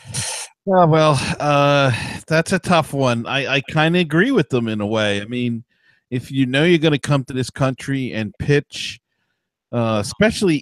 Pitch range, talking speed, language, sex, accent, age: 110-140 Hz, 185 wpm, English, male, American, 40-59